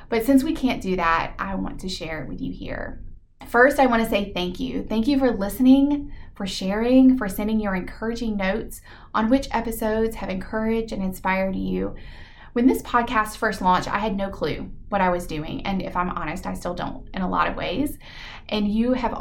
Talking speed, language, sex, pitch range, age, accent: 210 wpm, English, female, 185-225 Hz, 20-39, American